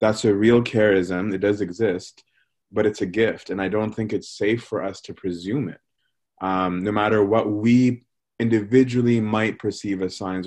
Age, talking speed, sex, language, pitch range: 30-49, 185 wpm, male, English, 100-115 Hz